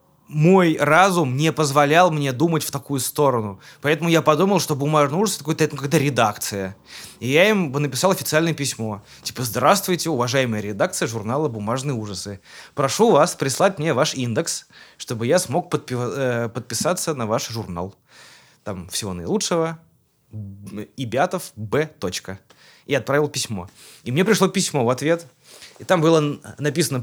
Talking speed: 140 wpm